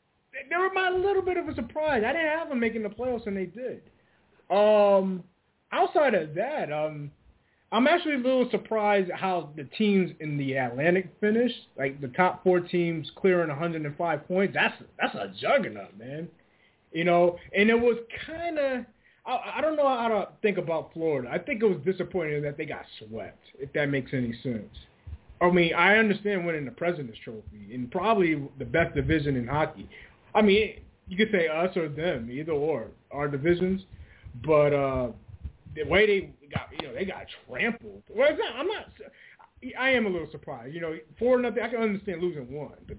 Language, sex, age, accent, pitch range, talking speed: English, male, 20-39, American, 145-220 Hz, 185 wpm